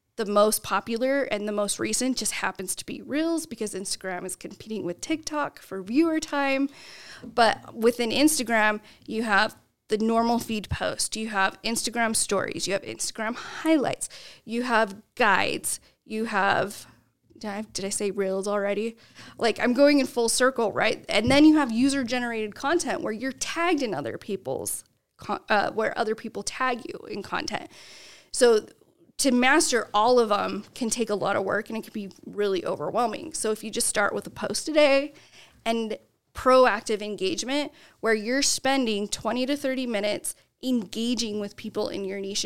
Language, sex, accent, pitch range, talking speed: English, female, American, 210-265 Hz, 170 wpm